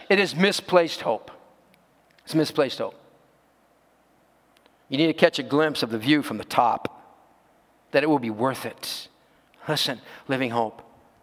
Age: 50-69